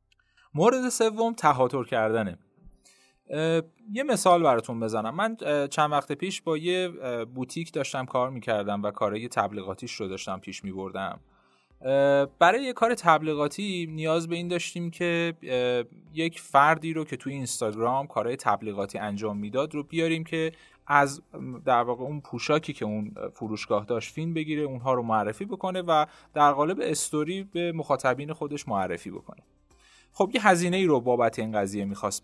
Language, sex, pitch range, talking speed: Persian, male, 120-170 Hz, 150 wpm